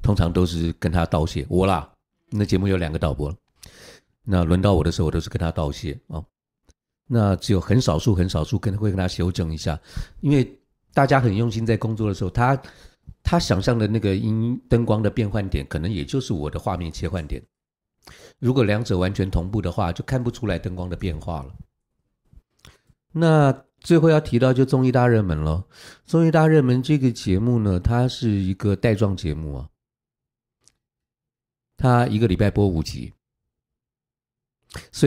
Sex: male